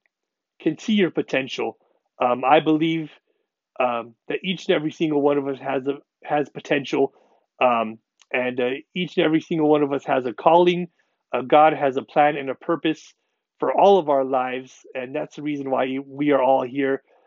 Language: English